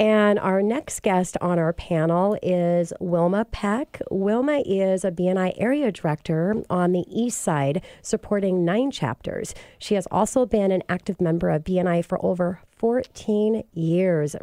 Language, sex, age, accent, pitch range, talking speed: English, female, 40-59, American, 175-220 Hz, 150 wpm